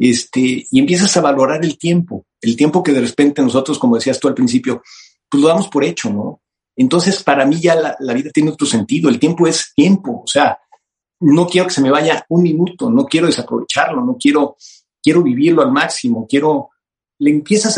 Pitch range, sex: 130-185 Hz, male